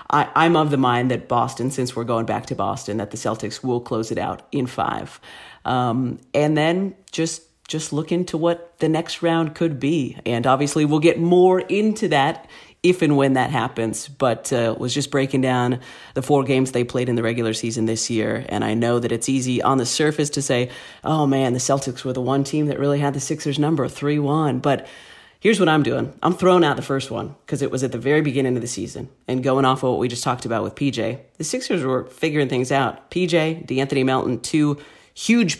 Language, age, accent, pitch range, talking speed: English, 40-59, American, 125-155 Hz, 220 wpm